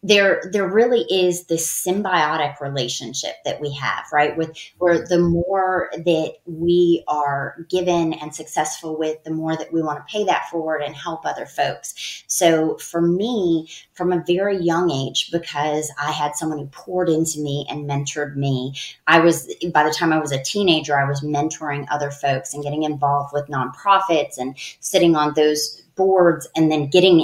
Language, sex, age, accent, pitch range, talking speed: English, female, 30-49, American, 150-180 Hz, 180 wpm